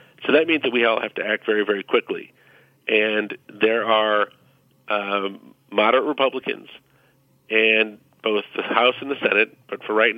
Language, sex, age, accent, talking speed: English, male, 40-59, American, 165 wpm